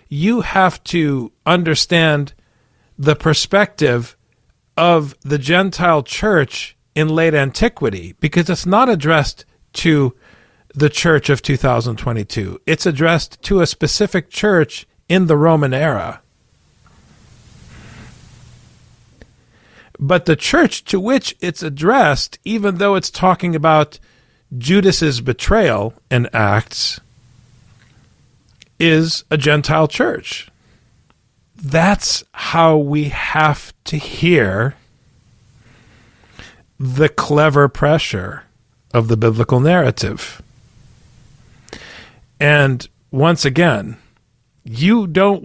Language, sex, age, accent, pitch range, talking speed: English, male, 40-59, American, 120-165 Hz, 90 wpm